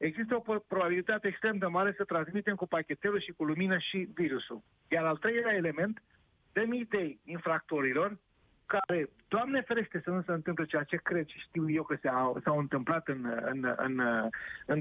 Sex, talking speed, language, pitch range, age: male, 175 wpm, Romanian, 155-205 Hz, 40-59